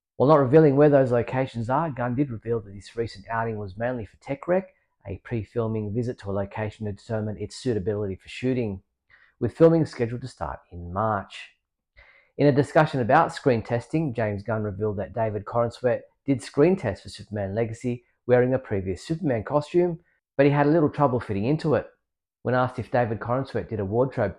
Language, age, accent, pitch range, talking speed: English, 40-59, Australian, 100-130 Hz, 190 wpm